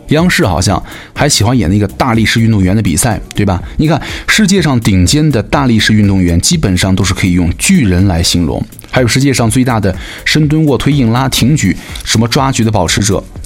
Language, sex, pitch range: Chinese, male, 95-125 Hz